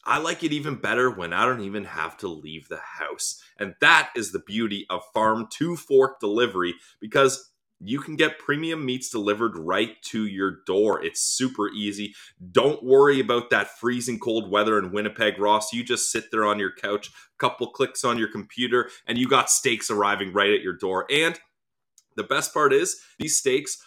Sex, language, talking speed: male, English, 190 wpm